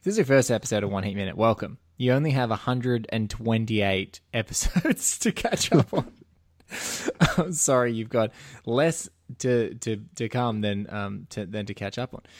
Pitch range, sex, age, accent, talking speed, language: 100-115 Hz, male, 20-39, Australian, 190 wpm, English